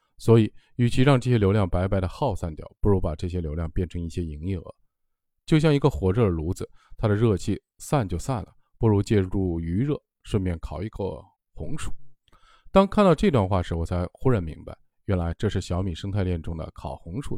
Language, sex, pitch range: Chinese, male, 90-130 Hz